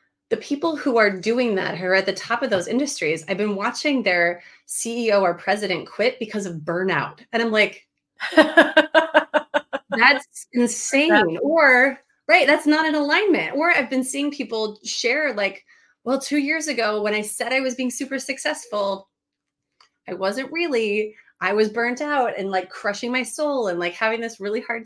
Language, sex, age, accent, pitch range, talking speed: English, female, 30-49, American, 195-270 Hz, 175 wpm